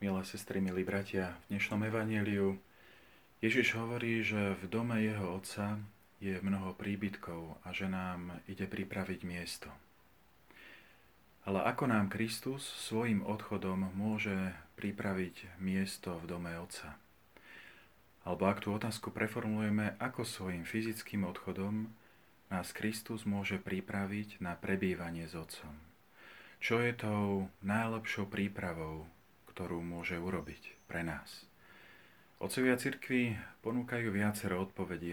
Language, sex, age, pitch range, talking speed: Slovak, male, 40-59, 90-110 Hz, 115 wpm